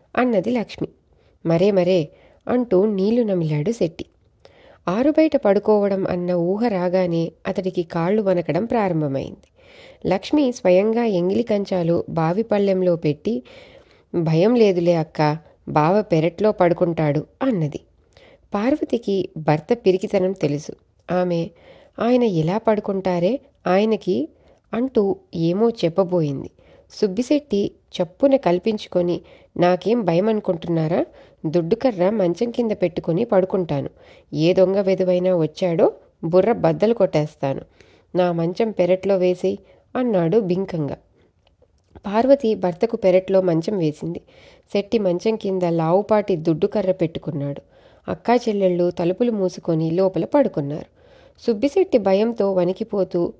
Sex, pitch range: female, 175-220 Hz